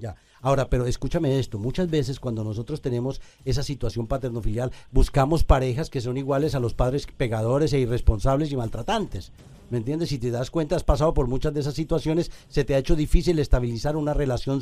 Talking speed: 195 wpm